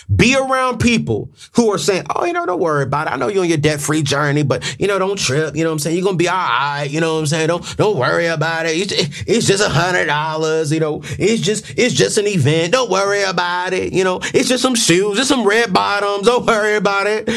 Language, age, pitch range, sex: English, 30-49, 140-220 Hz, male